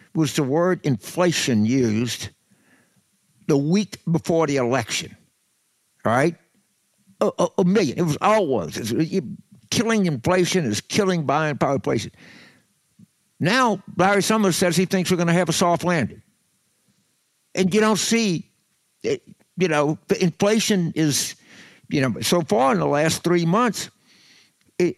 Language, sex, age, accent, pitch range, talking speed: English, male, 60-79, American, 150-210 Hz, 135 wpm